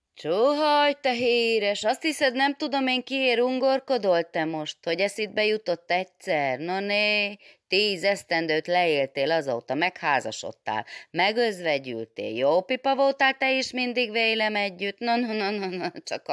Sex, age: female, 30-49